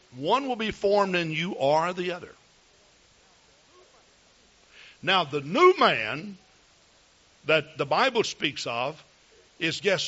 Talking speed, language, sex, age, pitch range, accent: 120 wpm, English, male, 60-79, 155-240 Hz, American